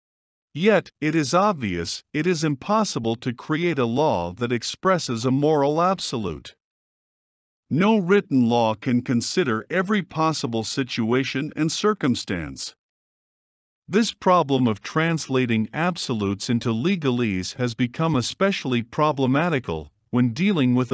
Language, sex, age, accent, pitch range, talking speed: English, male, 50-69, American, 115-160 Hz, 115 wpm